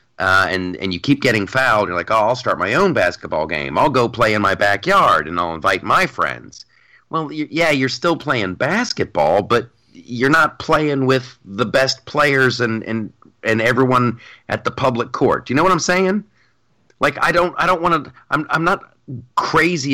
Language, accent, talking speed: English, American, 200 wpm